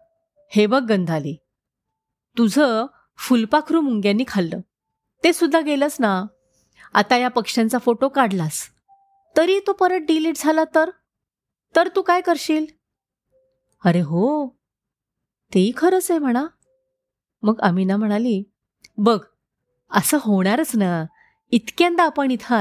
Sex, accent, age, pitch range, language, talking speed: female, native, 30-49, 200-320 Hz, Marathi, 110 wpm